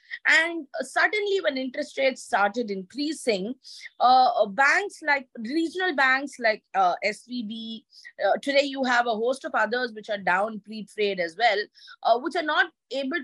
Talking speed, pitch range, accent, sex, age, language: 155 wpm, 210-315 Hz, Indian, female, 20-39, English